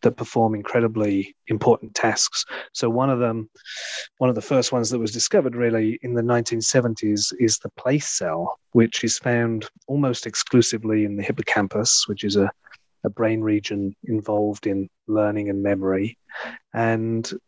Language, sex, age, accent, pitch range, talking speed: English, male, 30-49, British, 105-125 Hz, 155 wpm